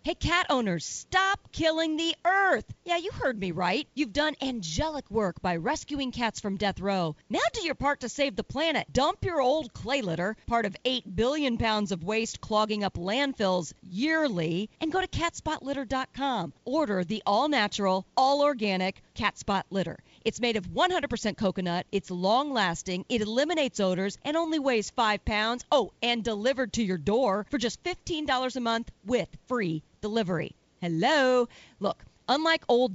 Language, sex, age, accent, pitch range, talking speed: English, female, 40-59, American, 200-295 Hz, 160 wpm